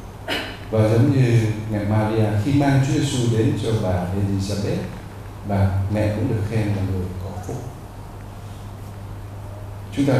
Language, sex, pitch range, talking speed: Vietnamese, male, 100-115 Hz, 140 wpm